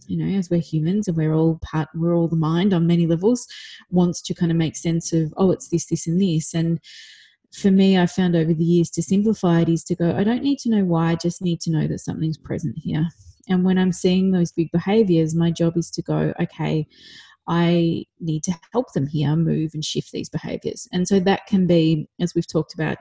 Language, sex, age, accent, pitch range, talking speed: English, female, 30-49, Australian, 160-180 Hz, 240 wpm